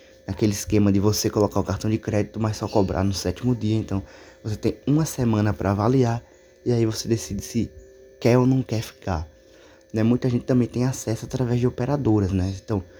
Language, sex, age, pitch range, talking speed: Portuguese, male, 20-39, 95-115 Hz, 200 wpm